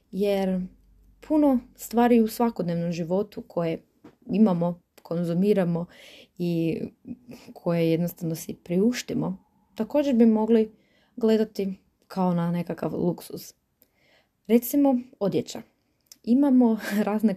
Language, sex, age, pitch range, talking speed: Croatian, female, 20-39, 175-230 Hz, 90 wpm